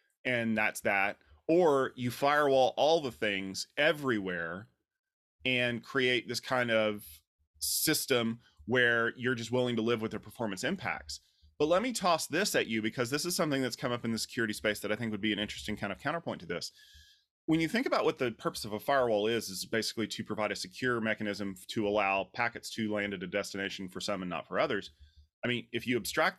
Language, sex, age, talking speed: English, male, 30-49, 210 wpm